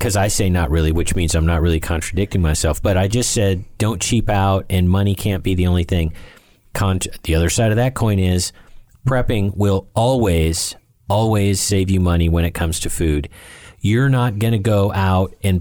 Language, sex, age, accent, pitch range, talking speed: English, male, 40-59, American, 85-100 Hz, 205 wpm